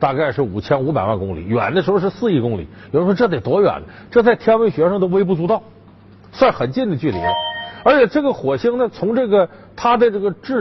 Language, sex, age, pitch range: Chinese, male, 50-69, 125-205 Hz